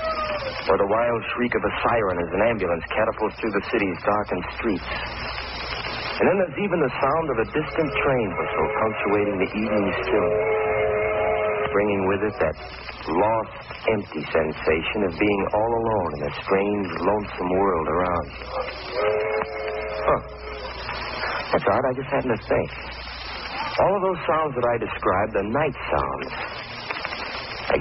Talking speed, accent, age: 140 wpm, American, 60-79